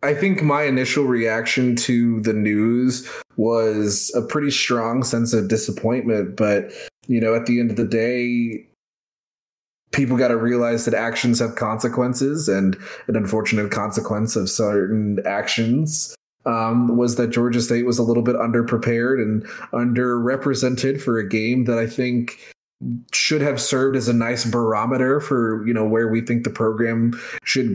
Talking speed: 160 wpm